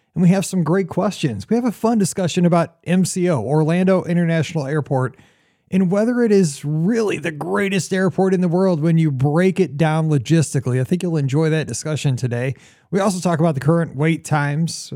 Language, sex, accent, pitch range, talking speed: English, male, American, 145-185 Hz, 195 wpm